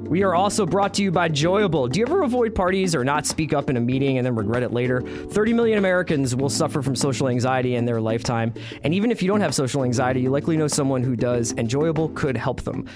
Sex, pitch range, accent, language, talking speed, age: male, 115-155 Hz, American, English, 255 wpm, 20-39